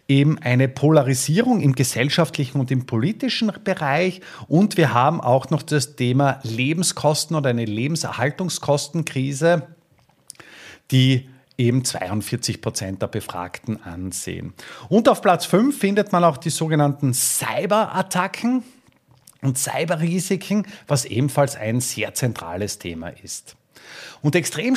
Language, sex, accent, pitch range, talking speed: German, male, Austrian, 130-180 Hz, 115 wpm